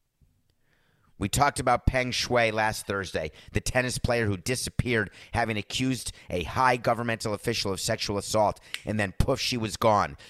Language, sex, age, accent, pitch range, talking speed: English, male, 30-49, American, 100-125 Hz, 155 wpm